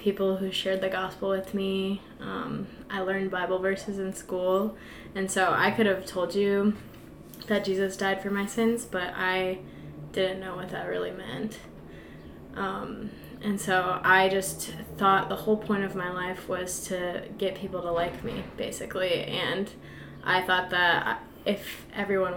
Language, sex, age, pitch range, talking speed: English, female, 20-39, 180-205 Hz, 165 wpm